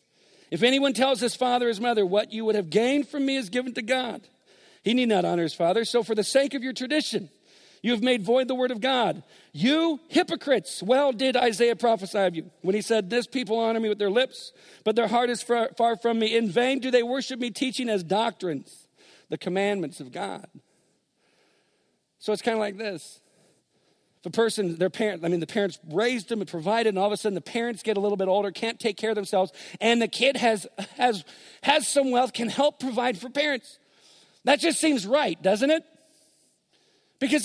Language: English